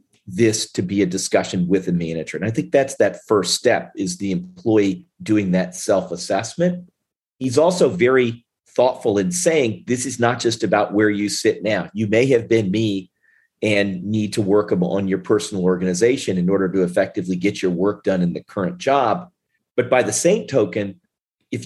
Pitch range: 95-115 Hz